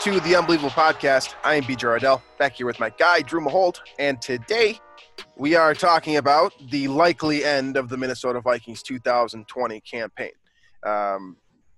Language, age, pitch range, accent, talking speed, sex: English, 20-39, 120-155 Hz, American, 160 wpm, male